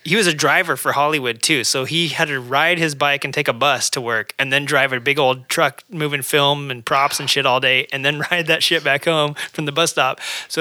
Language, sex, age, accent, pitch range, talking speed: English, male, 30-49, American, 130-155 Hz, 265 wpm